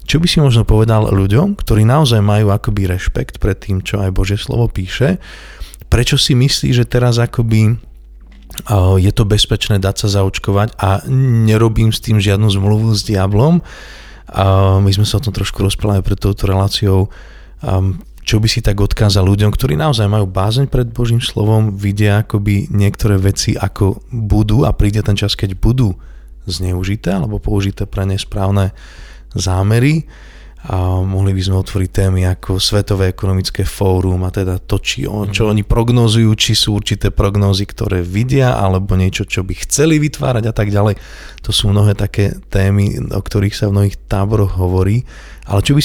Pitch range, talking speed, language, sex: 95-110 Hz, 165 wpm, Slovak, male